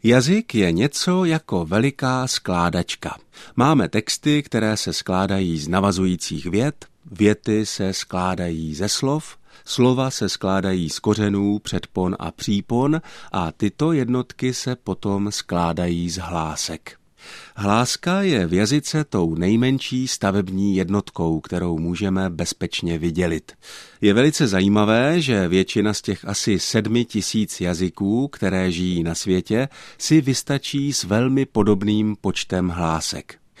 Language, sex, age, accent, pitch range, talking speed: Czech, male, 50-69, native, 90-125 Hz, 125 wpm